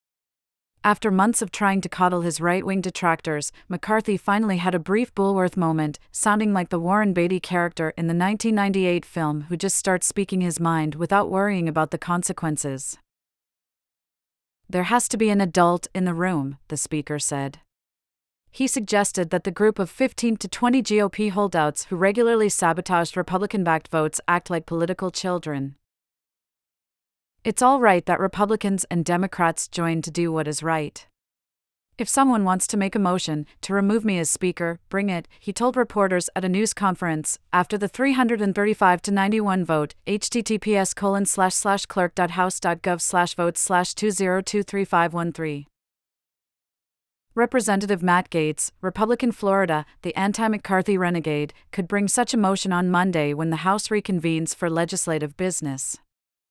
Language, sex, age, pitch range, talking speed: English, female, 30-49, 165-205 Hz, 145 wpm